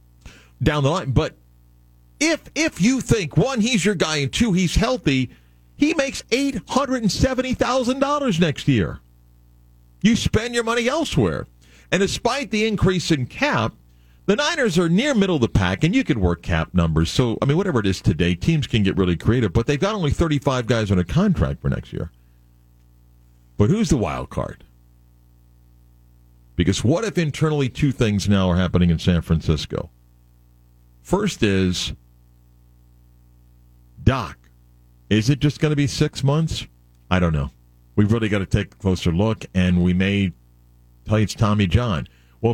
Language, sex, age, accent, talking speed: English, male, 50-69, American, 165 wpm